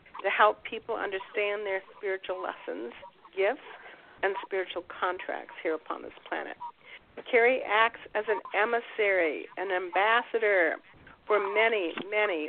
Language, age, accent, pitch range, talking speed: English, 50-69, American, 185-290 Hz, 120 wpm